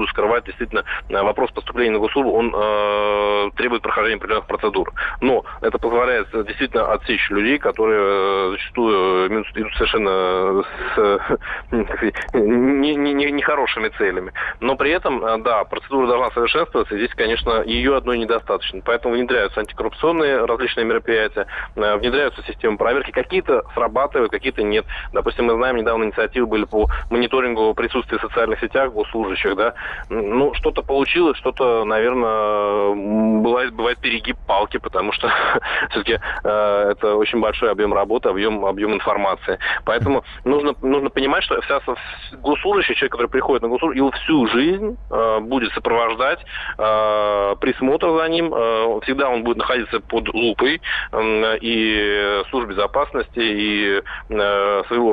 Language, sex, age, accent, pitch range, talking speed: Russian, male, 20-39, native, 105-135 Hz, 130 wpm